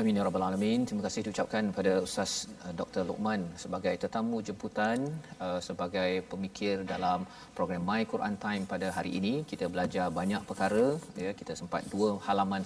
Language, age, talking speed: Malayalam, 40-59, 150 wpm